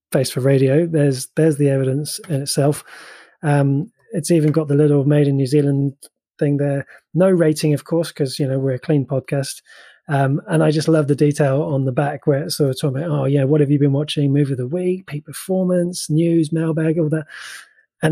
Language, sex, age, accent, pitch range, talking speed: English, male, 20-39, British, 135-155 Hz, 220 wpm